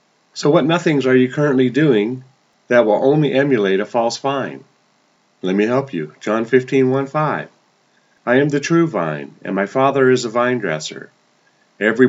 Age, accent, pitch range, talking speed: 40-59, American, 115-140 Hz, 175 wpm